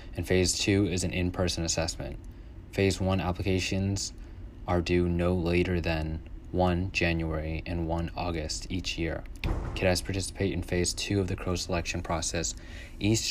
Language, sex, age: English, male, 20-39